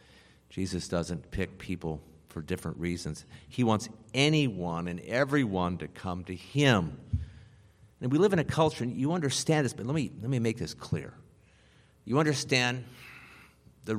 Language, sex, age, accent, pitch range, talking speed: English, male, 50-69, American, 90-135 Hz, 160 wpm